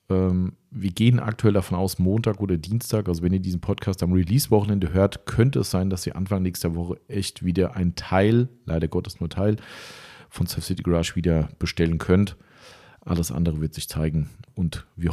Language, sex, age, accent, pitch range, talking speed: German, male, 40-59, German, 90-110 Hz, 185 wpm